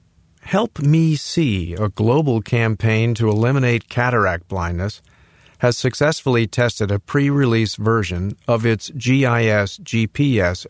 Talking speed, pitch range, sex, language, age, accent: 110 wpm, 100-125 Hz, male, English, 50-69, American